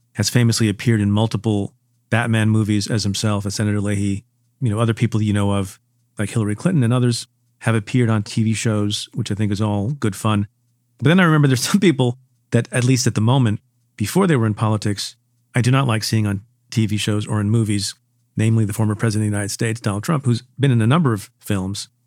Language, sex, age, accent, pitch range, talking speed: English, male, 40-59, American, 110-125 Hz, 225 wpm